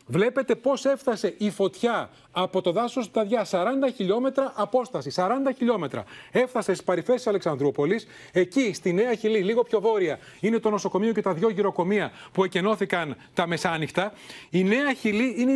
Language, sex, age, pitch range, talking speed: Greek, male, 30-49, 180-240 Hz, 160 wpm